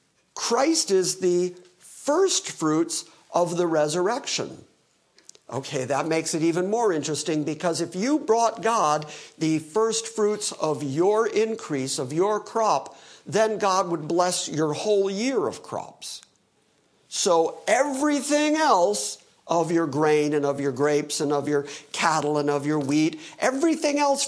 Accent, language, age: American, English, 50-69